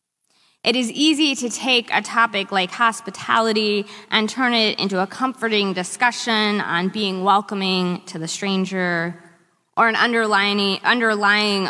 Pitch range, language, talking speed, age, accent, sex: 190-235 Hz, English, 130 wpm, 20-39, American, female